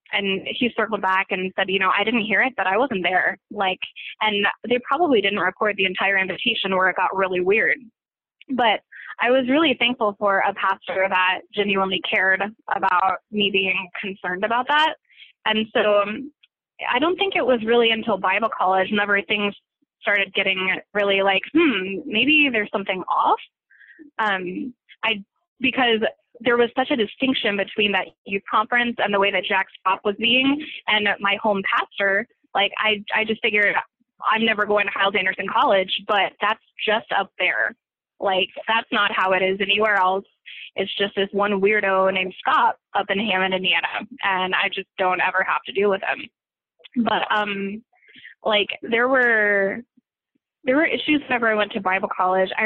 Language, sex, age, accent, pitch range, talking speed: English, female, 20-39, American, 195-235 Hz, 175 wpm